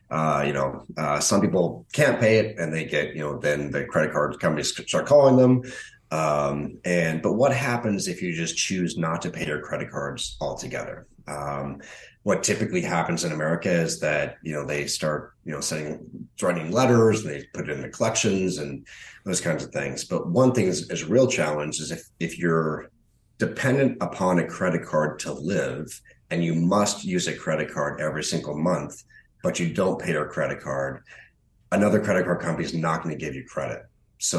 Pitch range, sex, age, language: 75-90 Hz, male, 30-49, English